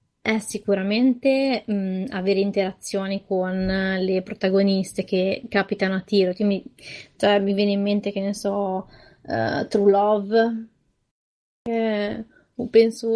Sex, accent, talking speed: female, native, 130 wpm